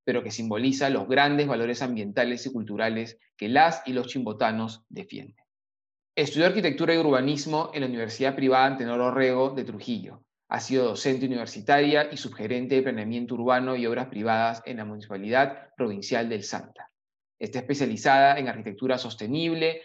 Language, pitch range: Spanish, 120-145 Hz